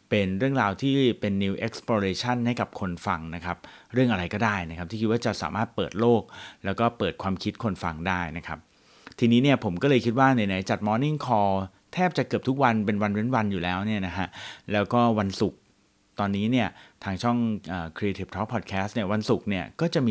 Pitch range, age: 95-115 Hz, 30-49